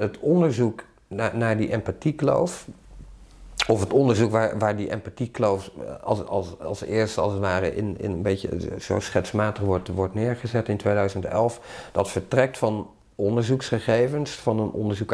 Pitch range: 100-115 Hz